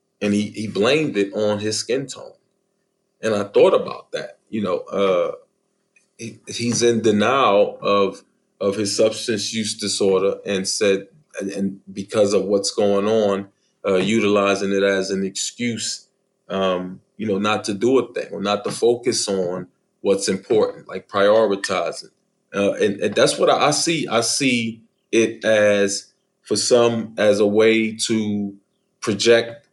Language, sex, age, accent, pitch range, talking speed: English, male, 30-49, American, 100-120 Hz, 155 wpm